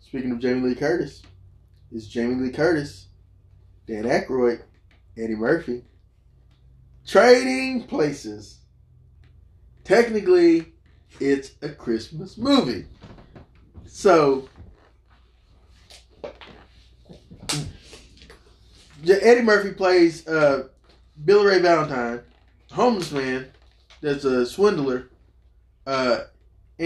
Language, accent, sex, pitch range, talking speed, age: English, American, male, 115-160 Hz, 80 wpm, 20-39